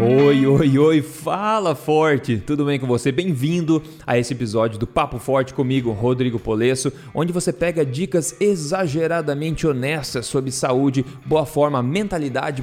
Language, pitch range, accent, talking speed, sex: Portuguese, 125-155 Hz, Brazilian, 145 wpm, male